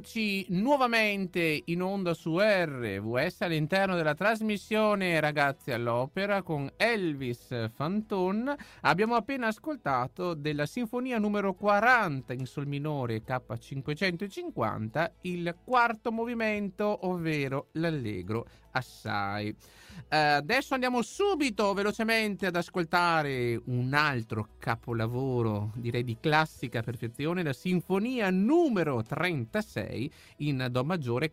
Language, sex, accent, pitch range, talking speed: Italian, male, native, 135-215 Hz, 100 wpm